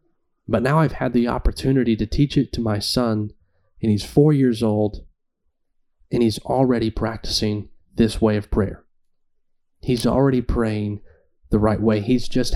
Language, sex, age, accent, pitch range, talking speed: English, male, 30-49, American, 110-130 Hz, 160 wpm